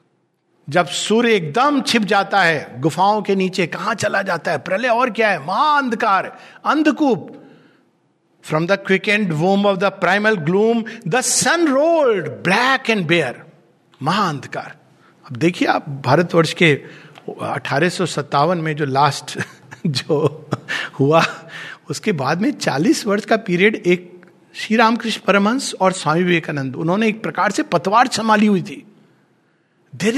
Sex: male